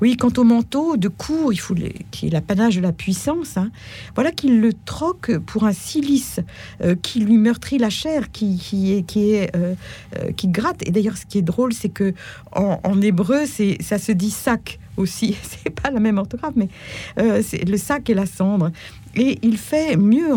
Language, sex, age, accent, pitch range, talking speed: French, female, 50-69, French, 195-255 Hz, 205 wpm